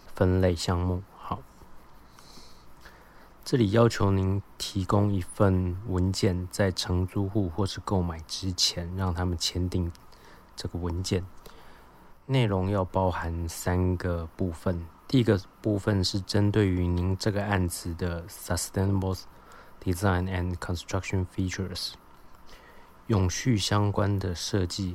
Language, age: Chinese, 20-39